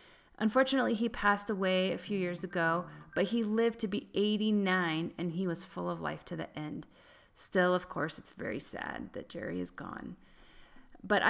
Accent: American